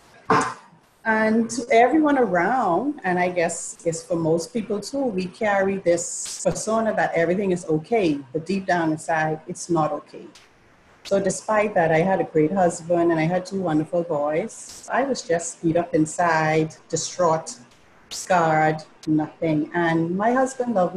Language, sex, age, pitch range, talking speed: English, female, 40-59, 160-210 Hz, 150 wpm